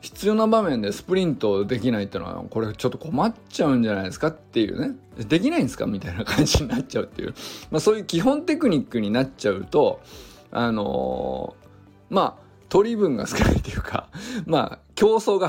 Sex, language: male, Japanese